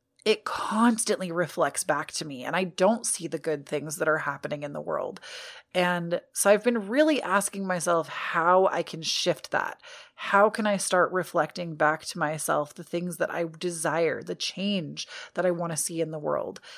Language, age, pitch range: English, 30-49, 165-210 Hz